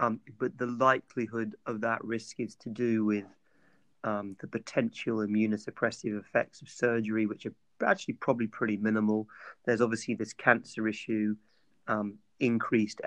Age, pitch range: 30-49, 105-120 Hz